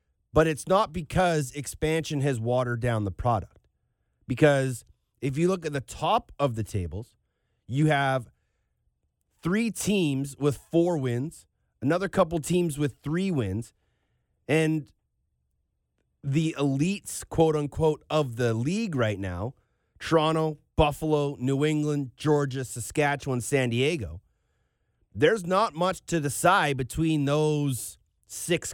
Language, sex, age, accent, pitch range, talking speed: English, male, 30-49, American, 120-155 Hz, 120 wpm